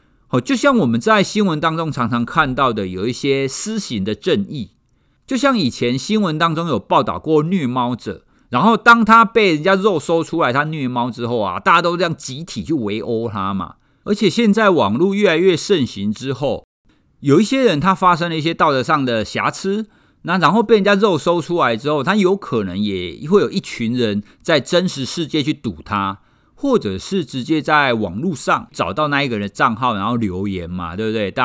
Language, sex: Chinese, male